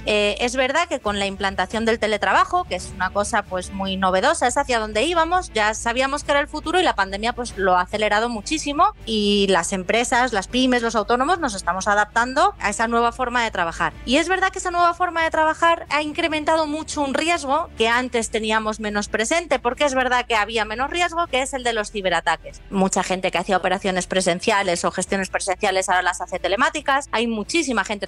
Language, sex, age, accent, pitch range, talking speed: Spanish, female, 30-49, Spanish, 195-290 Hz, 210 wpm